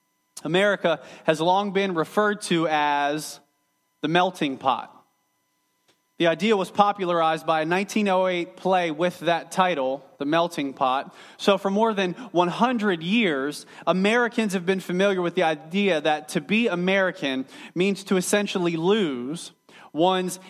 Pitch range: 155-195 Hz